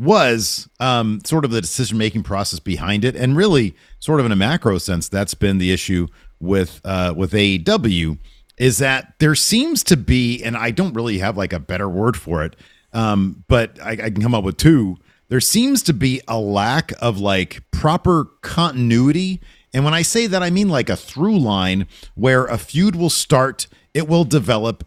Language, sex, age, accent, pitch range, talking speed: English, male, 40-59, American, 105-165 Hz, 195 wpm